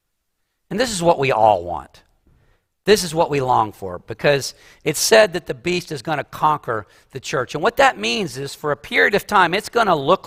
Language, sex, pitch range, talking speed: English, male, 135-175 Hz, 230 wpm